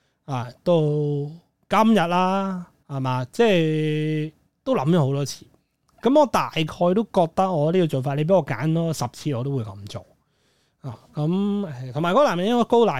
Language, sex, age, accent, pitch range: Chinese, male, 20-39, native, 140-175 Hz